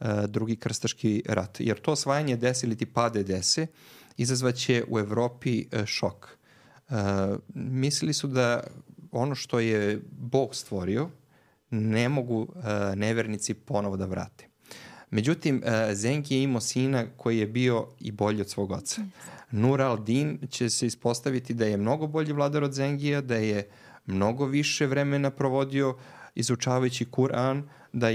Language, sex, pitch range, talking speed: English, male, 110-140 Hz, 130 wpm